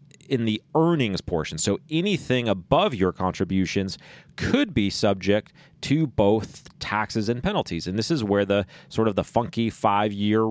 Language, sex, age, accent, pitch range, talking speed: English, male, 30-49, American, 100-125 Hz, 155 wpm